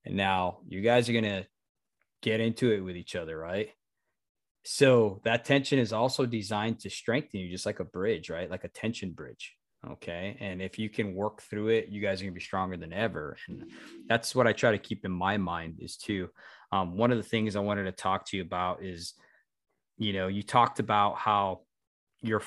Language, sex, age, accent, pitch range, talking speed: English, male, 20-39, American, 95-115 Hz, 215 wpm